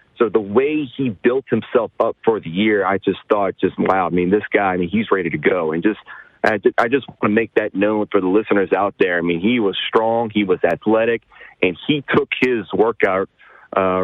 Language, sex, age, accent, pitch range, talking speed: English, male, 30-49, American, 110-150 Hz, 225 wpm